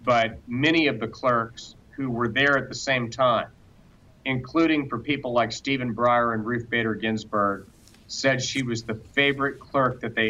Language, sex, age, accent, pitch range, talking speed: English, male, 40-59, American, 110-130 Hz, 175 wpm